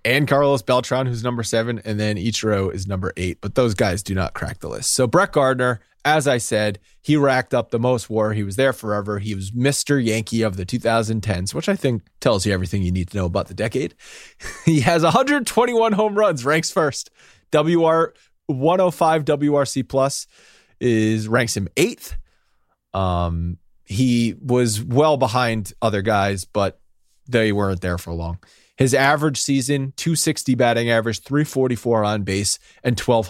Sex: male